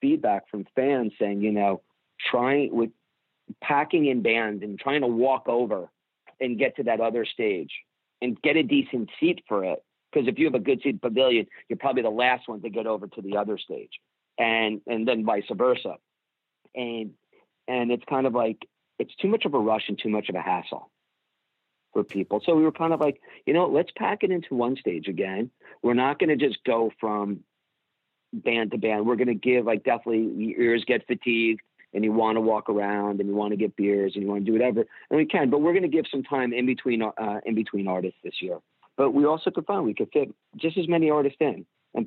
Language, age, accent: English, 50-69, American